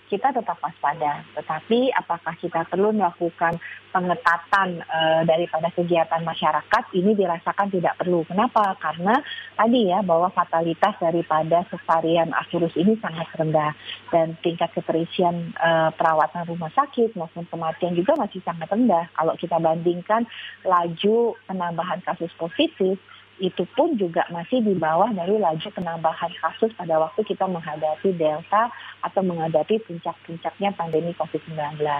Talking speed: 130 wpm